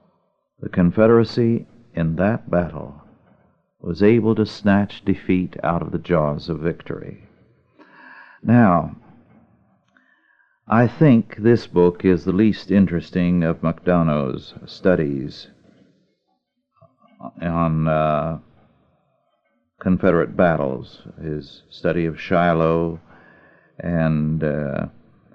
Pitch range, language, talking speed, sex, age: 80-100 Hz, English, 90 wpm, male, 50-69